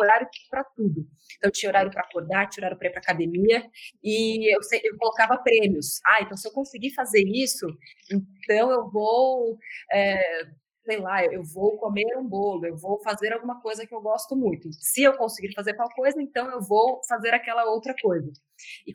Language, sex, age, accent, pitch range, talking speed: Portuguese, female, 20-39, Brazilian, 195-240 Hz, 190 wpm